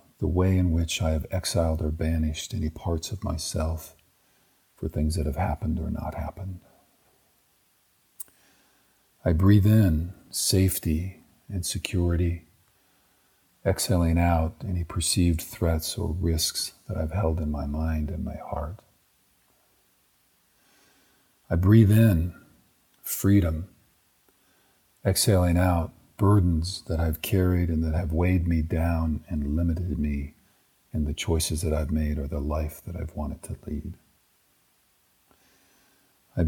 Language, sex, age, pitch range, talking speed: English, male, 50-69, 80-95 Hz, 125 wpm